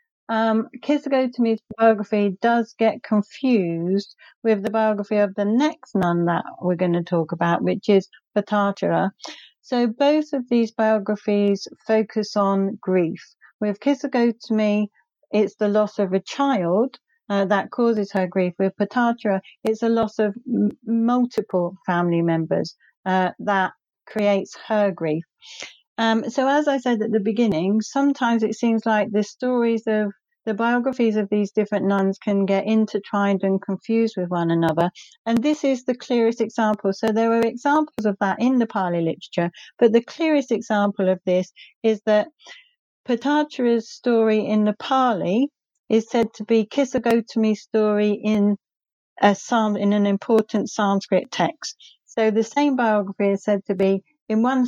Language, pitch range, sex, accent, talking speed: English, 200-240 Hz, female, British, 155 wpm